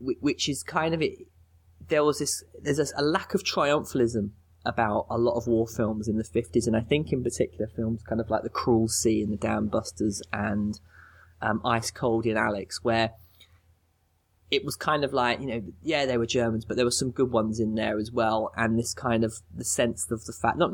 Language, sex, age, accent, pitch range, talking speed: English, male, 20-39, British, 100-125 Hz, 225 wpm